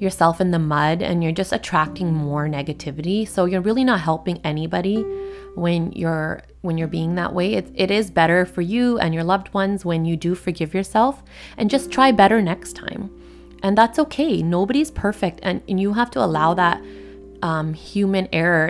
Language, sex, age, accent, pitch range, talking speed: English, female, 20-39, American, 165-205 Hz, 190 wpm